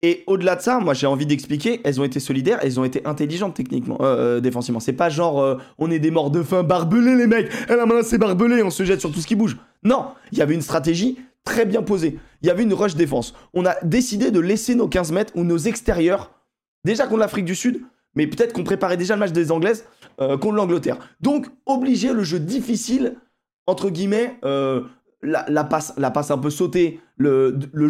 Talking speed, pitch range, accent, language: 230 wpm, 150-225 Hz, French, French